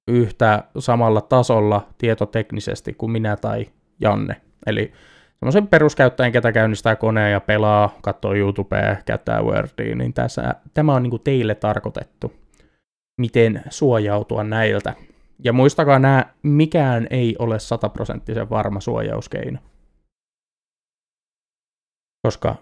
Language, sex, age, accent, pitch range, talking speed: Finnish, male, 20-39, native, 105-130 Hz, 105 wpm